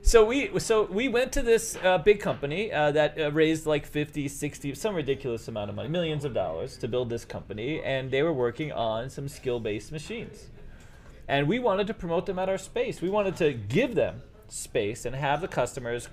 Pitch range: 135-190 Hz